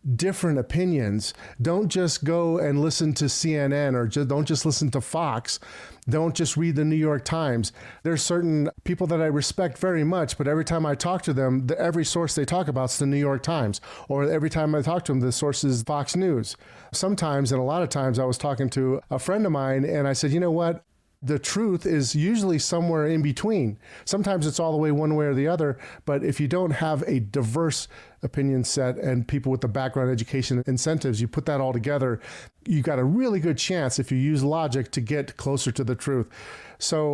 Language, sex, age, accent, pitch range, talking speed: English, male, 40-59, American, 130-160 Hz, 220 wpm